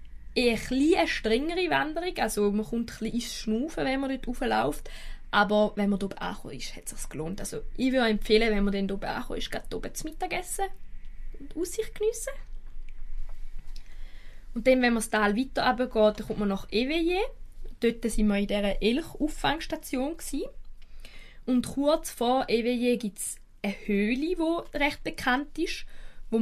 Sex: female